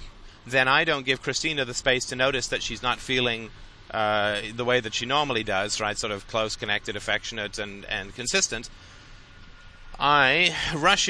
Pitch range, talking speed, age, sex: 110-135 Hz, 170 wpm, 30-49, male